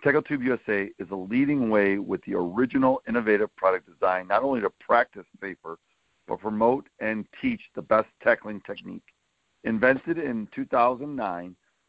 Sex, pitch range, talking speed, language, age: male, 105-140 Hz, 145 wpm, English, 50-69